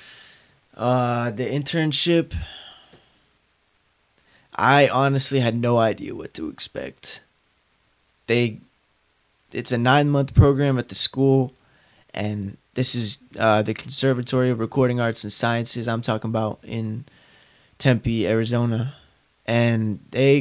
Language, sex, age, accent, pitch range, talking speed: English, male, 20-39, American, 115-140 Hz, 115 wpm